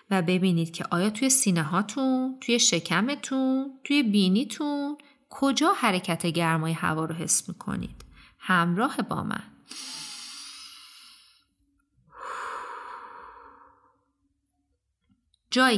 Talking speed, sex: 85 wpm, female